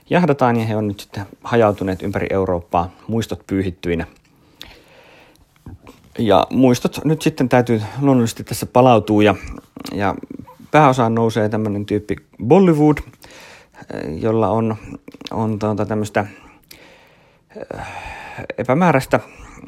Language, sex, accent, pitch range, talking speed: Finnish, male, native, 90-110 Hz, 100 wpm